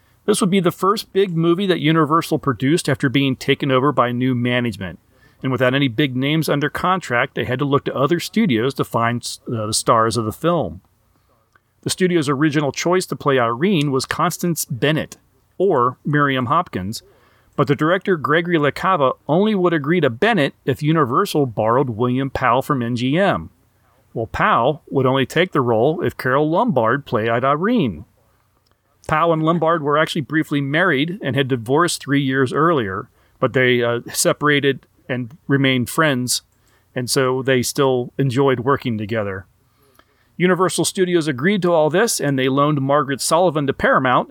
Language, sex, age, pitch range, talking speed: English, male, 40-59, 120-160 Hz, 165 wpm